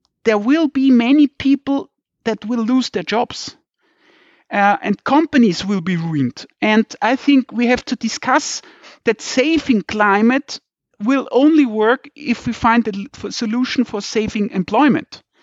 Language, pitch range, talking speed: English, 205-270 Hz, 145 wpm